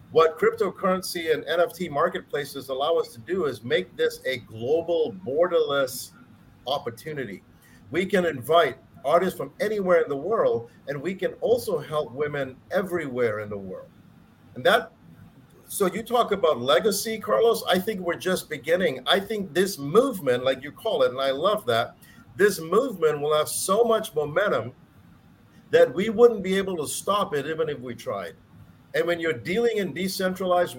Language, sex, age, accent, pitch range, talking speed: English, male, 50-69, American, 145-205 Hz, 165 wpm